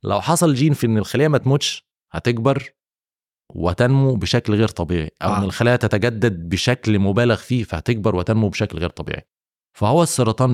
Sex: male